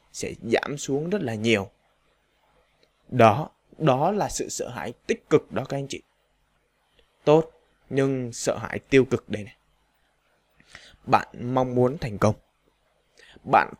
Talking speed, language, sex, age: 140 wpm, Vietnamese, male, 20-39